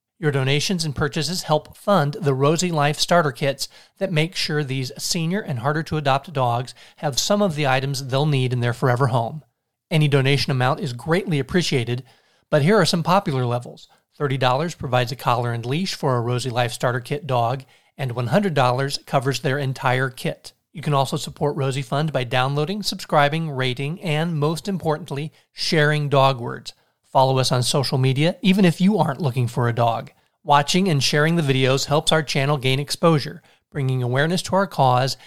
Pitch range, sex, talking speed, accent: 130-160 Hz, male, 180 wpm, American